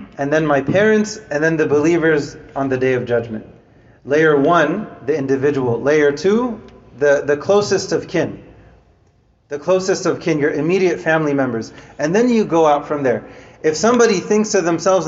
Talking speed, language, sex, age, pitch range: 175 wpm, English, male, 30-49, 145-175 Hz